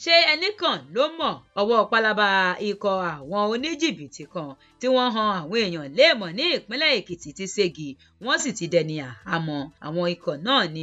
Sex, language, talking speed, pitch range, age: female, English, 165 wpm, 165-240 Hz, 30-49